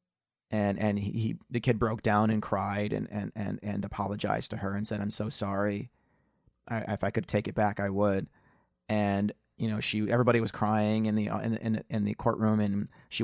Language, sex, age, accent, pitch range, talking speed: English, male, 30-49, American, 105-120 Hz, 215 wpm